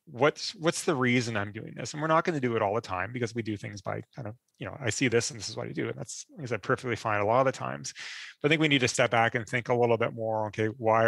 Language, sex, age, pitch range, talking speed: English, male, 30-49, 105-125 Hz, 330 wpm